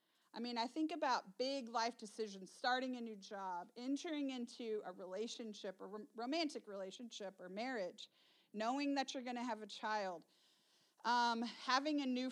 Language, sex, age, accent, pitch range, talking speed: English, female, 40-59, American, 200-255 Hz, 160 wpm